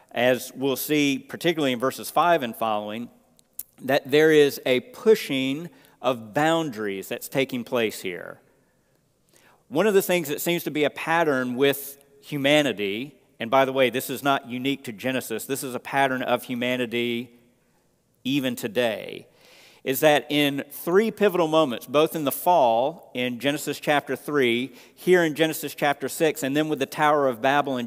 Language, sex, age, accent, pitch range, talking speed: English, male, 50-69, American, 130-165 Hz, 165 wpm